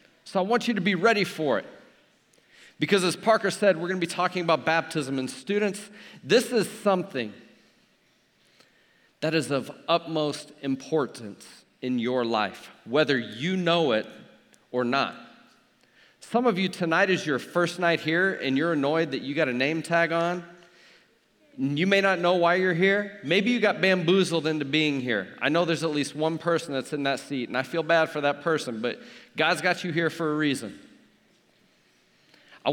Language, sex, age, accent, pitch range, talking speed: English, male, 40-59, American, 140-180 Hz, 180 wpm